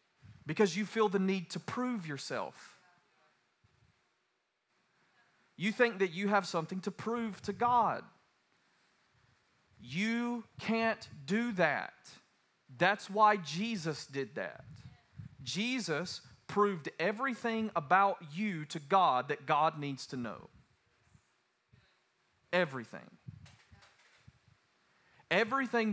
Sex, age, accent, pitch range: male, 30-49, American, 135-195 Hz